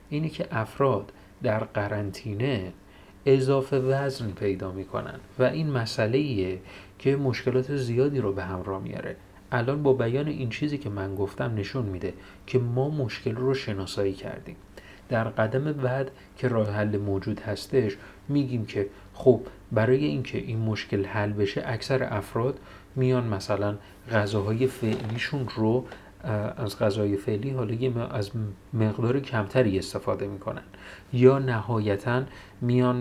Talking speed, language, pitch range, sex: 130 wpm, Persian, 100-130 Hz, male